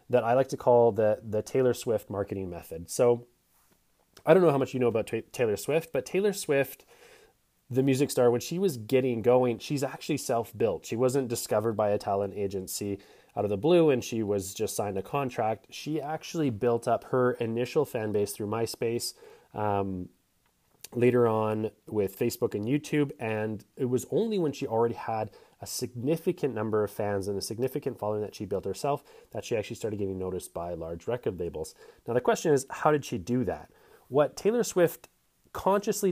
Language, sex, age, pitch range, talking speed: English, male, 20-39, 105-140 Hz, 190 wpm